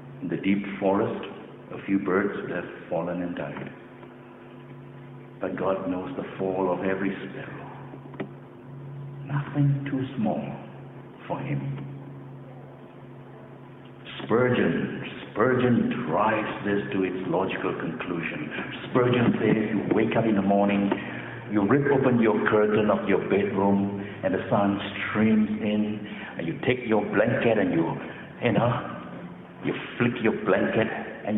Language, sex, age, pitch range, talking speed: English, male, 60-79, 95-130 Hz, 130 wpm